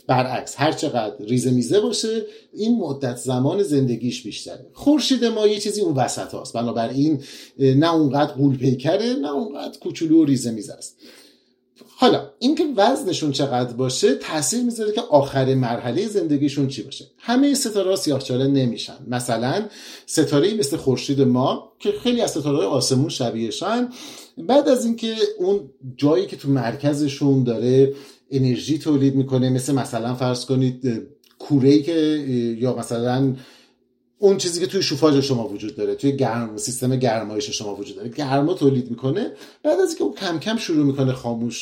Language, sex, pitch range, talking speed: Persian, male, 130-205 Hz, 155 wpm